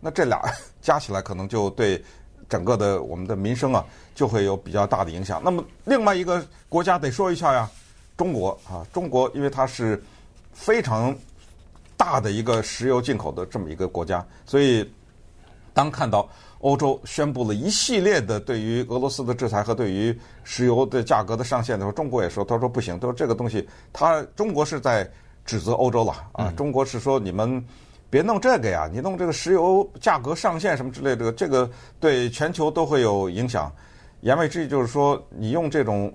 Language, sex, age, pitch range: Chinese, male, 50-69, 100-140 Hz